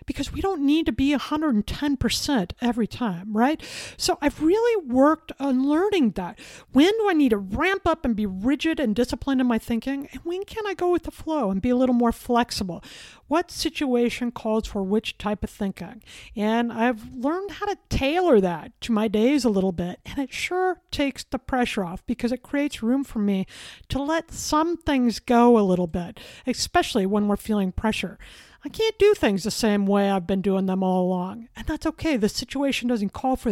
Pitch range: 210-290 Hz